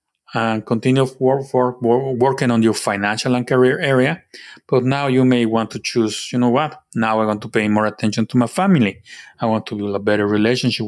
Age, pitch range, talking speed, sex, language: 30-49, 110-130 Hz, 200 wpm, male, English